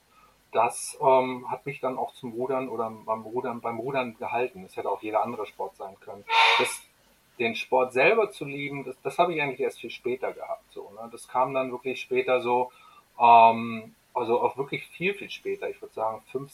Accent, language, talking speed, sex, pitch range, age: German, German, 190 wpm, male, 110-140 Hz, 30-49